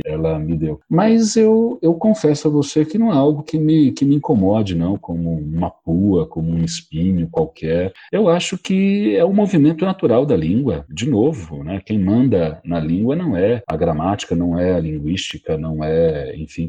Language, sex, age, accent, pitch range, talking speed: Portuguese, male, 40-59, Brazilian, 85-125 Hz, 190 wpm